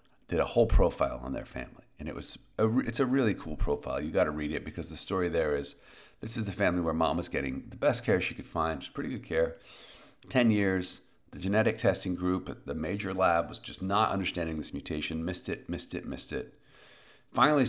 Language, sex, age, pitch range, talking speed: English, male, 40-59, 90-125 Hz, 225 wpm